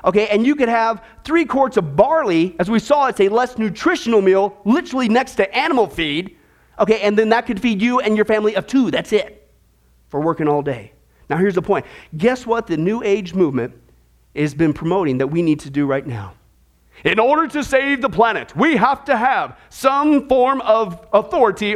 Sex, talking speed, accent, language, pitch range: male, 205 wpm, American, English, 180-275 Hz